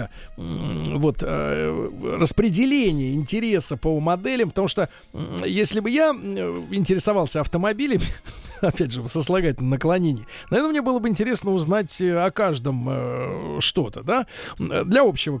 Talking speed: 115 wpm